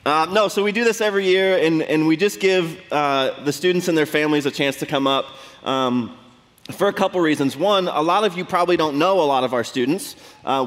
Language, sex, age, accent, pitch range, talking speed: English, male, 20-39, American, 120-155 Hz, 240 wpm